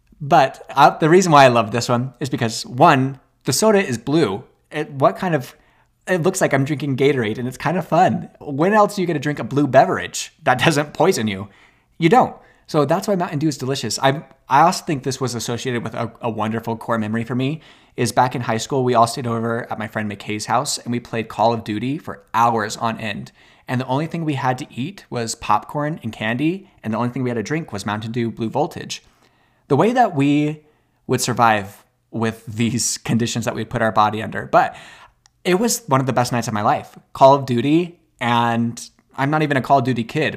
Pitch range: 115-155 Hz